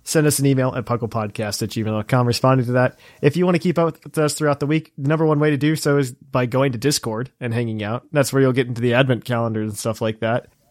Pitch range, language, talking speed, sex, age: 115-145 Hz, English, 275 wpm, male, 30-49